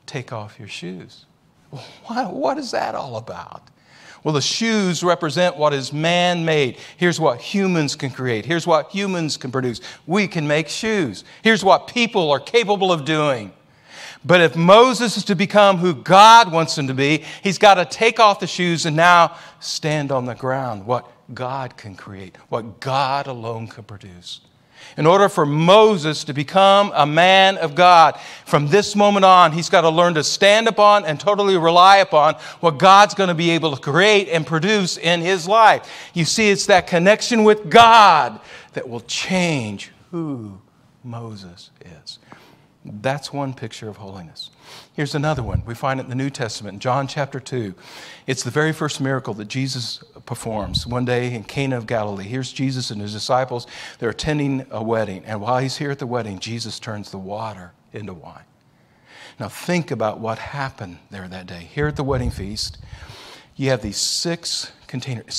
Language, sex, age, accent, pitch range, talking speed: English, male, 50-69, American, 120-180 Hz, 180 wpm